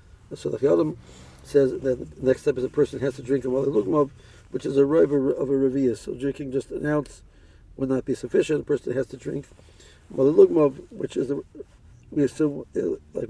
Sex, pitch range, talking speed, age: male, 95-140 Hz, 200 wpm, 60-79